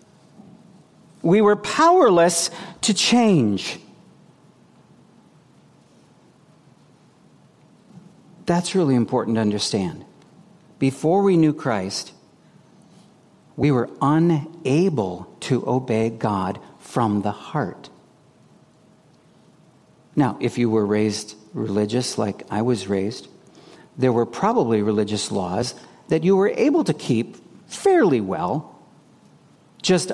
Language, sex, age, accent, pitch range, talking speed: English, male, 50-69, American, 110-165 Hz, 95 wpm